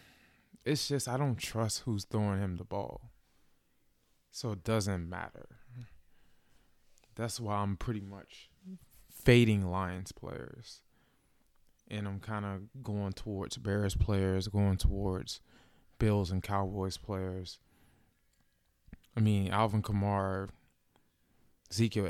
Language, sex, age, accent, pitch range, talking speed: English, male, 20-39, American, 95-110 Hz, 110 wpm